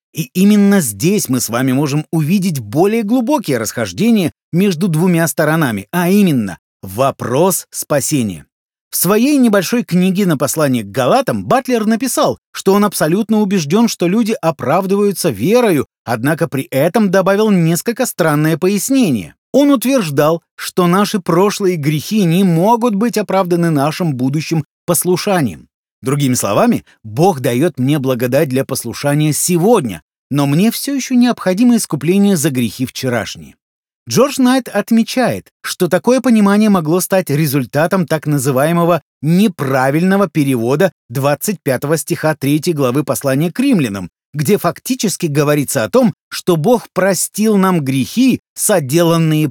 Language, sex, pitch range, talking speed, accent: Russian, male, 145-210 Hz, 125 wpm, native